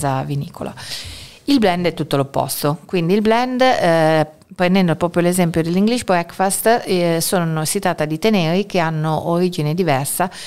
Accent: native